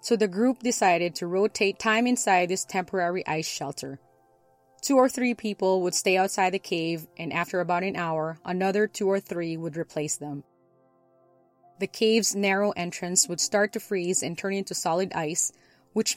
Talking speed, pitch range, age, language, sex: 175 wpm, 155-195 Hz, 20-39, English, female